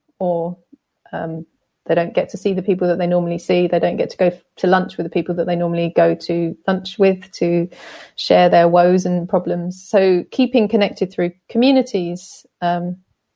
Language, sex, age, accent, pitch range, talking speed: English, female, 30-49, British, 175-215 Hz, 195 wpm